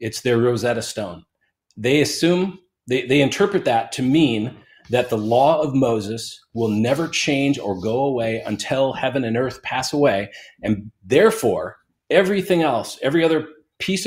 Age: 40-59